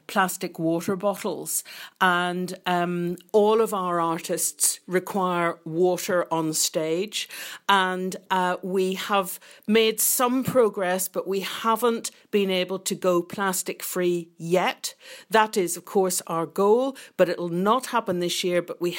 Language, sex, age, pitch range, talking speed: English, female, 50-69, 170-200 Hz, 140 wpm